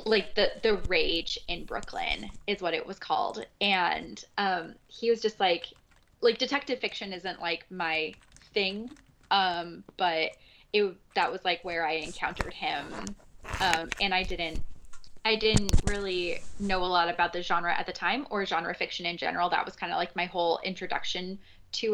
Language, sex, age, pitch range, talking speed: English, female, 10-29, 170-210 Hz, 175 wpm